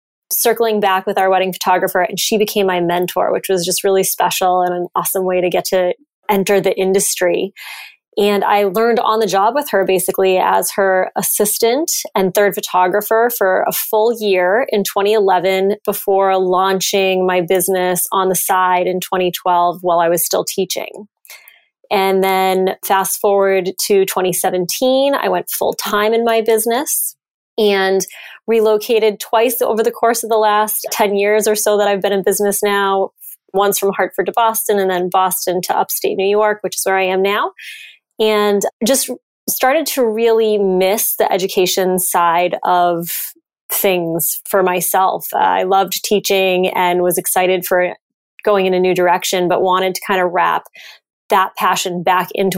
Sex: female